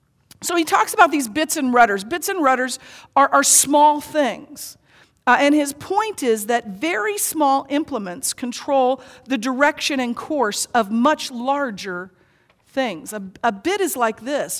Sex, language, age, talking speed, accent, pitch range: female, English, 50-69, 160 wpm, American, 230-300 Hz